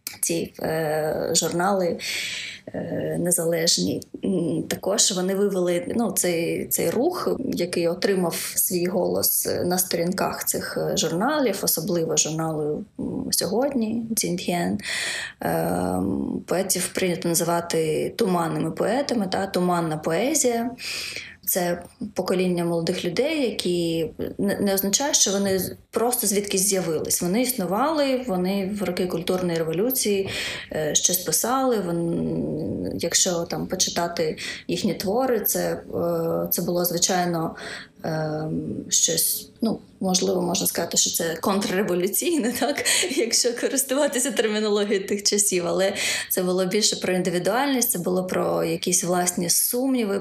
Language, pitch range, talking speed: Ukrainian, 170-210 Hz, 110 wpm